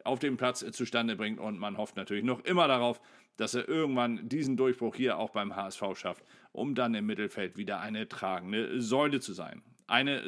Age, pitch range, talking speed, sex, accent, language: 40-59, 115-140 Hz, 195 wpm, male, German, German